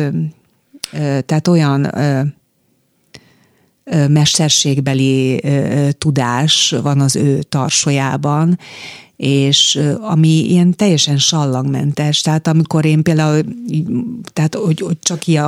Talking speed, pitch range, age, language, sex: 100 wpm, 145-180 Hz, 40-59, Hungarian, female